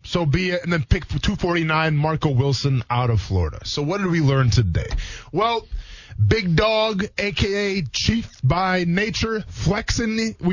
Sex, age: male, 20-39